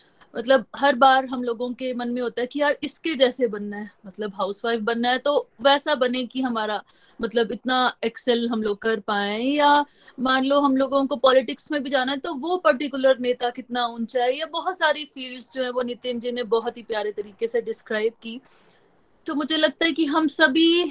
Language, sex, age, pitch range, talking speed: Hindi, female, 30-49, 230-280 Hz, 210 wpm